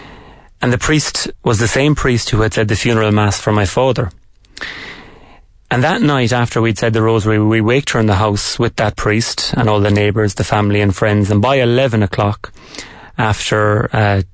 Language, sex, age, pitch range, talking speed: English, male, 30-49, 105-125 Hz, 195 wpm